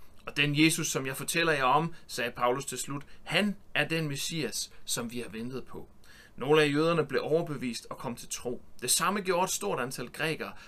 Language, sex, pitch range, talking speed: Danish, male, 150-190 Hz, 210 wpm